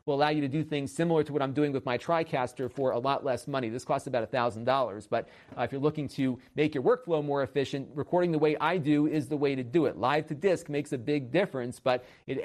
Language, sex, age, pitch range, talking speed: English, male, 40-59, 130-160 Hz, 260 wpm